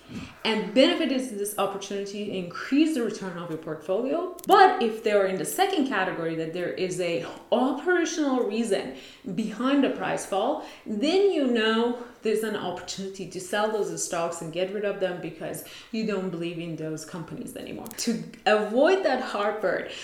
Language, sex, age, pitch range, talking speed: English, female, 30-49, 185-265 Hz, 165 wpm